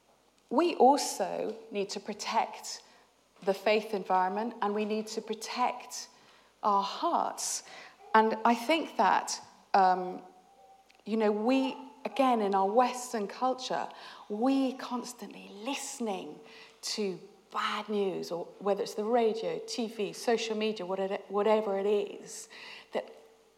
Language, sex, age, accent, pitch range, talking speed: English, female, 40-59, British, 200-255 Hz, 115 wpm